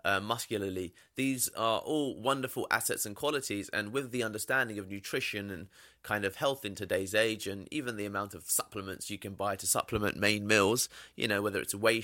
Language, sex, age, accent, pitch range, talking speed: English, male, 20-39, British, 95-120 Hz, 200 wpm